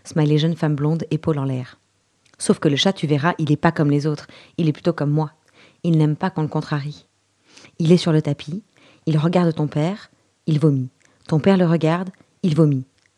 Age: 30-49